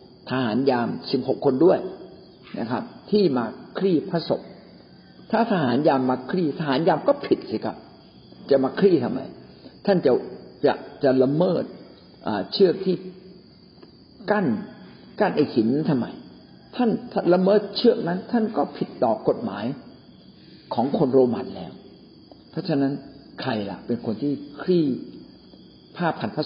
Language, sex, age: Thai, male, 50-69